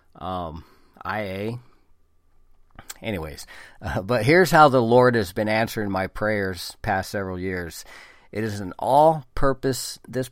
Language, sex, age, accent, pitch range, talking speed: English, male, 40-59, American, 90-115 Hz, 135 wpm